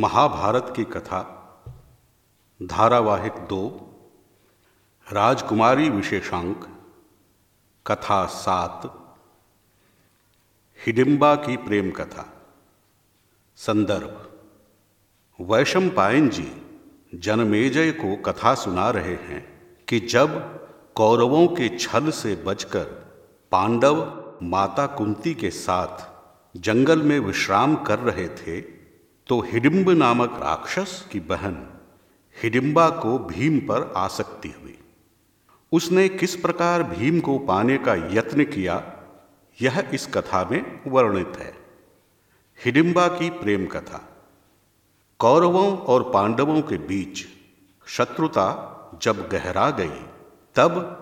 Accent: native